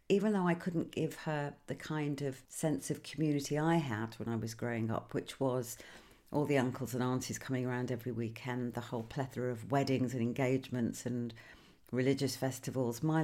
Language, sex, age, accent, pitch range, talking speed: English, female, 50-69, British, 120-145 Hz, 185 wpm